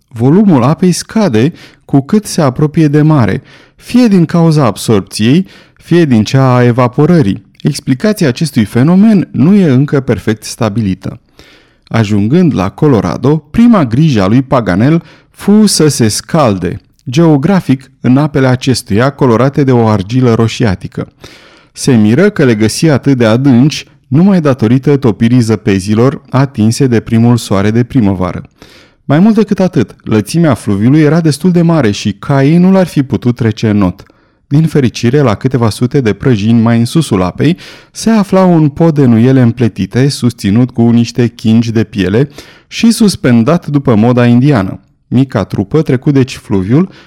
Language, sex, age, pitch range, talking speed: Romanian, male, 30-49, 115-155 Hz, 150 wpm